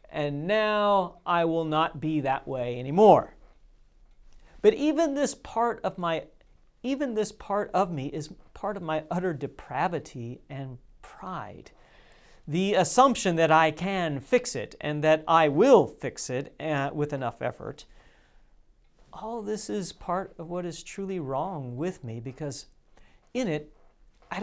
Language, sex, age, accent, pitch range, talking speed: English, male, 40-59, American, 140-200 Hz, 145 wpm